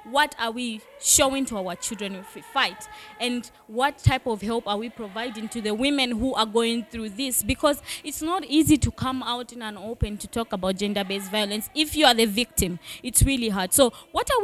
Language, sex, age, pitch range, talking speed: English, female, 20-39, 230-285 Hz, 215 wpm